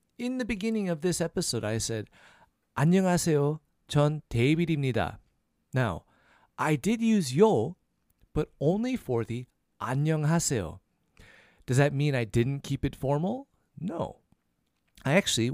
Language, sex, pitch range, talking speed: English, male, 115-175 Hz, 125 wpm